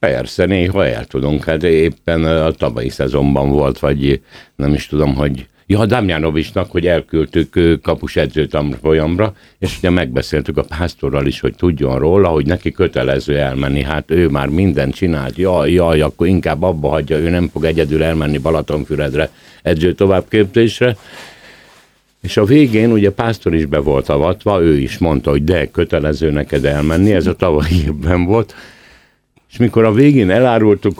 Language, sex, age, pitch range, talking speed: Hungarian, male, 60-79, 75-100 Hz, 155 wpm